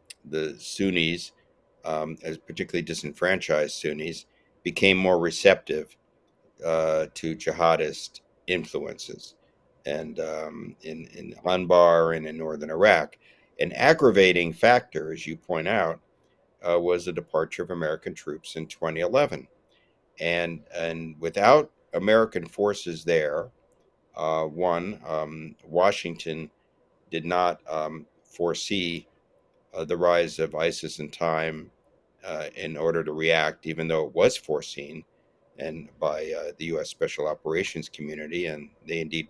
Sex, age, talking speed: male, 60-79, 125 wpm